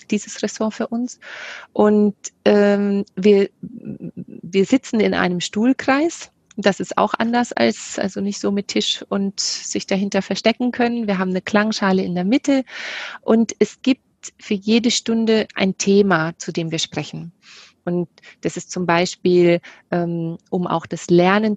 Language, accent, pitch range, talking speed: German, German, 170-210 Hz, 155 wpm